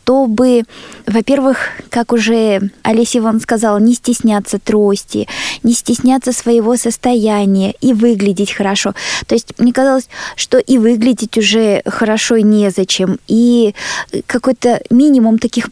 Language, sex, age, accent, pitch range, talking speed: Russian, female, 20-39, native, 205-250 Hz, 120 wpm